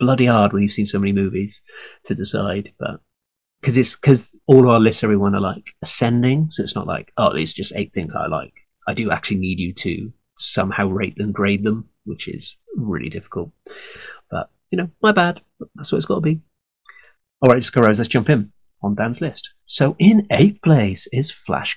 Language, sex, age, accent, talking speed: English, male, 30-49, British, 195 wpm